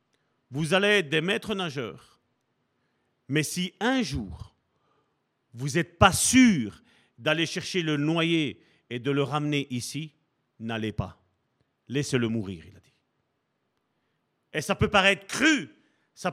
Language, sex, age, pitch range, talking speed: French, male, 40-59, 125-185 Hz, 130 wpm